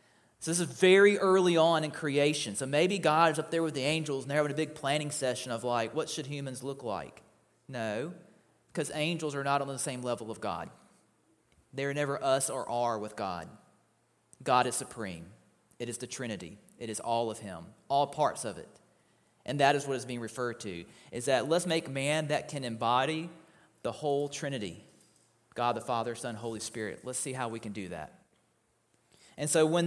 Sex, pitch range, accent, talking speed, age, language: male, 120-175 Hz, American, 200 wpm, 30-49, English